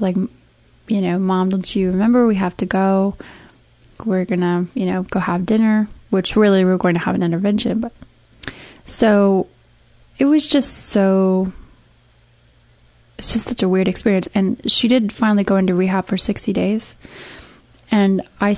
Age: 20-39